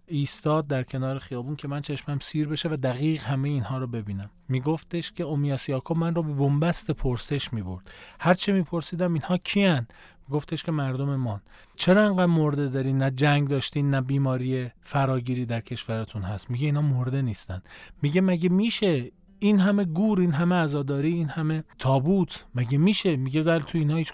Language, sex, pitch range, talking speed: Persian, male, 130-160 Hz, 175 wpm